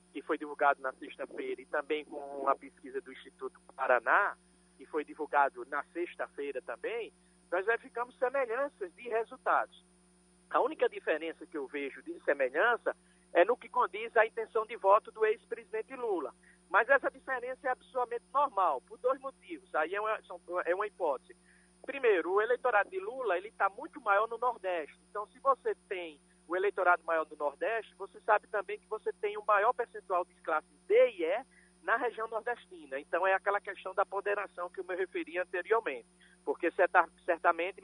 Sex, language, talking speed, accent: male, Portuguese, 175 wpm, Brazilian